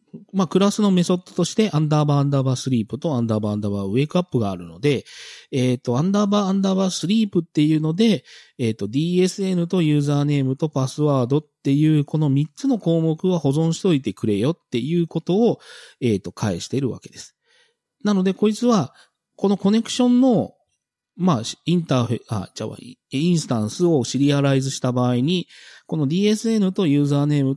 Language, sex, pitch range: Japanese, male, 135-210 Hz